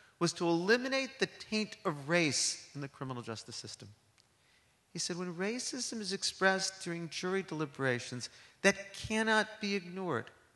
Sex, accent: male, American